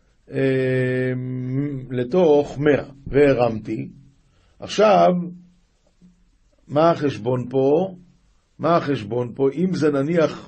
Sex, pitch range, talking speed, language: male, 135-180 Hz, 80 wpm, Hebrew